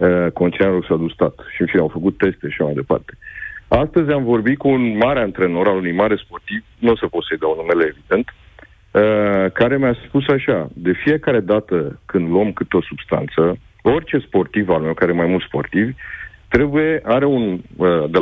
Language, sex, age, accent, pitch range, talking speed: Romanian, male, 50-69, native, 95-125 Hz, 195 wpm